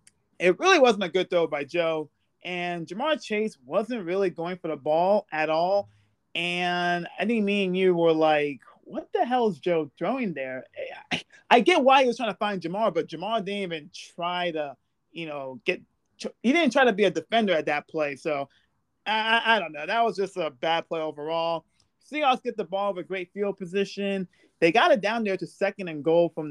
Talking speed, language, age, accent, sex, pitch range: 210 wpm, English, 30-49, American, male, 160-210 Hz